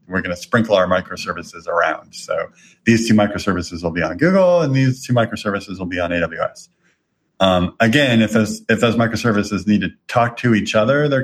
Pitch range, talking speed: 95-115 Hz, 190 wpm